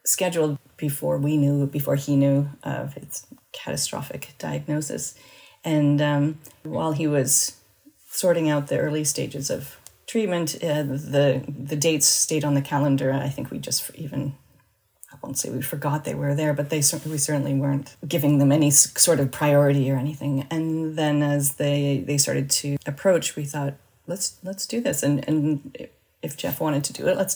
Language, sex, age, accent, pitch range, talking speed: English, female, 30-49, American, 140-165 Hz, 175 wpm